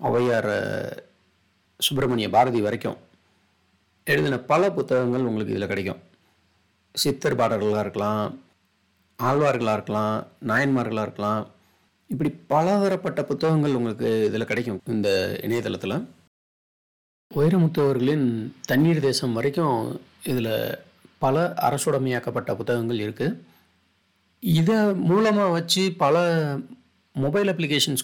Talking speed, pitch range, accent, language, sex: 85 wpm, 105-140 Hz, native, Tamil, male